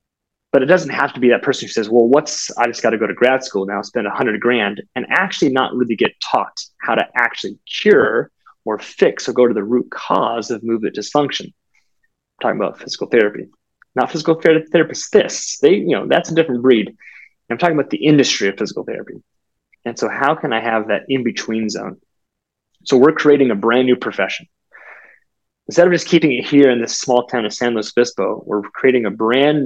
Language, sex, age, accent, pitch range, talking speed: English, male, 20-39, American, 110-145 Hz, 210 wpm